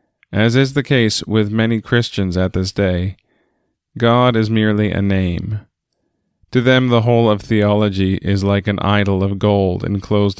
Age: 20-39